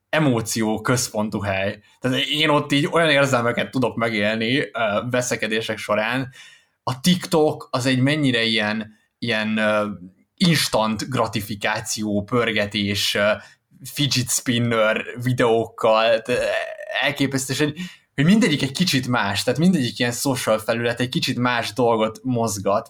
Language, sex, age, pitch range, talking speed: Hungarian, male, 20-39, 110-130 Hz, 110 wpm